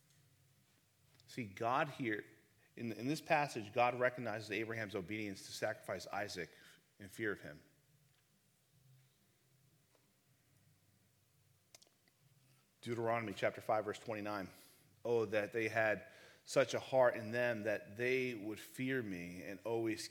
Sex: male